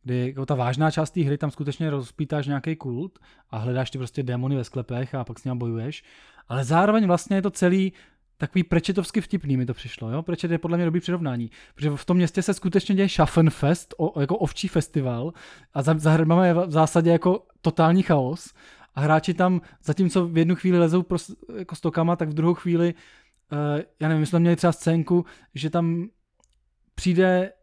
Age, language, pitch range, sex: 20-39, Czech, 150-185 Hz, male